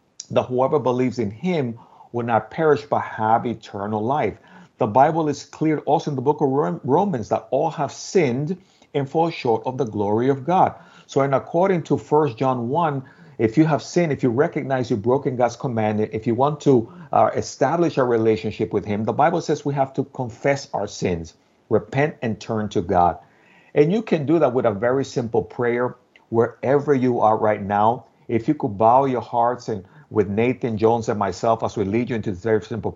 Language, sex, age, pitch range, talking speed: English, male, 50-69, 110-145 Hz, 200 wpm